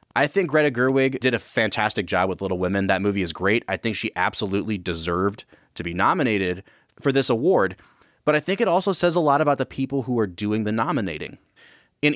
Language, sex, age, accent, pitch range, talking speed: English, male, 30-49, American, 100-145 Hz, 210 wpm